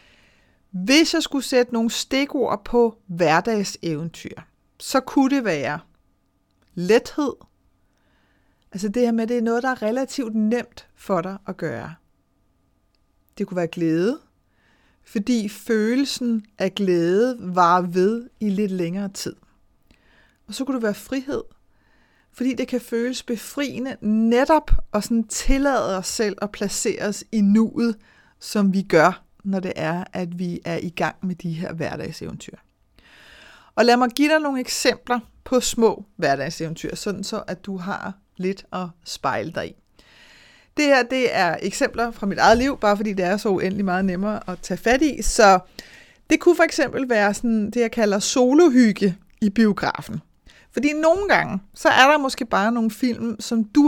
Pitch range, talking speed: 185-250 Hz, 160 wpm